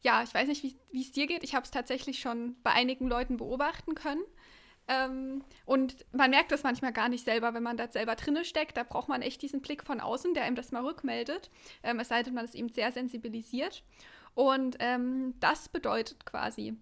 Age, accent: 20-39, German